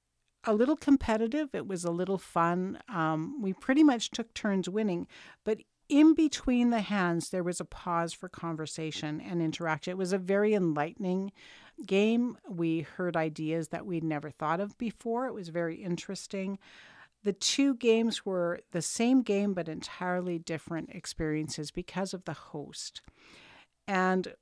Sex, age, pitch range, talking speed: female, 50-69, 165-205 Hz, 155 wpm